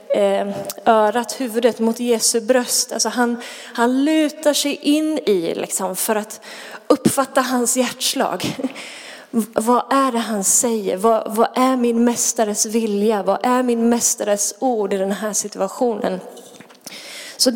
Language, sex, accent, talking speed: Swedish, female, native, 125 wpm